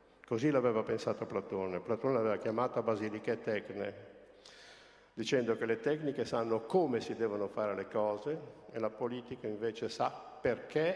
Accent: native